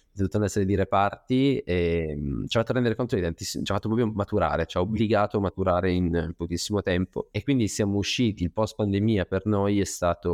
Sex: male